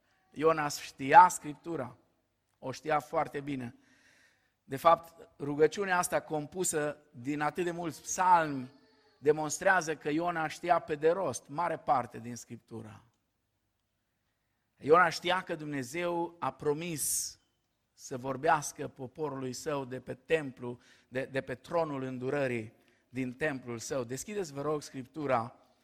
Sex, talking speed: male, 125 wpm